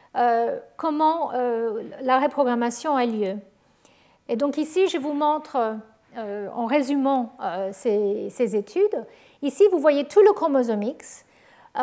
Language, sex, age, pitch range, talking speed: French, female, 50-69, 235-295 Hz, 140 wpm